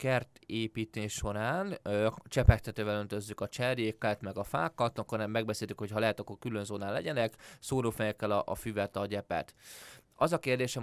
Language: Hungarian